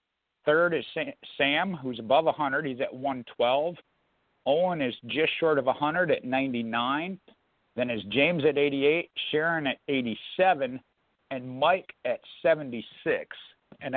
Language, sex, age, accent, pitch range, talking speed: English, male, 50-69, American, 135-180 Hz, 130 wpm